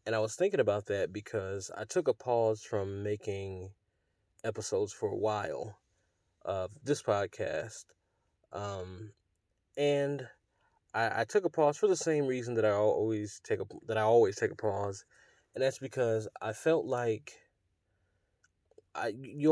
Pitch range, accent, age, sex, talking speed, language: 105-125 Hz, American, 20-39, male, 155 wpm, English